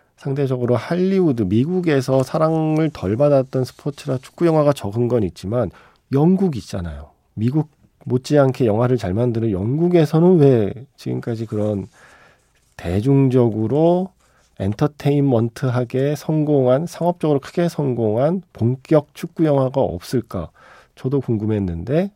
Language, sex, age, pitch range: Korean, male, 40-59, 100-145 Hz